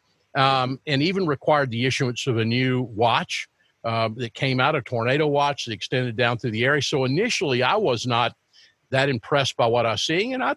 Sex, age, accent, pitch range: male, 50-69, American, 110-135 Hz